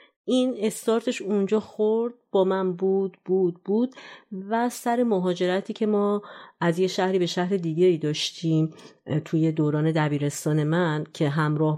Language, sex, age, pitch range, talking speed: Persian, female, 30-49, 155-195 Hz, 140 wpm